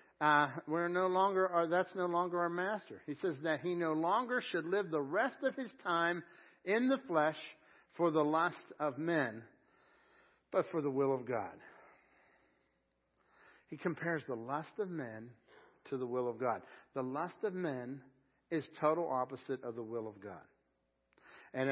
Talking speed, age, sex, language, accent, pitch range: 170 wpm, 60-79, male, English, American, 130-170 Hz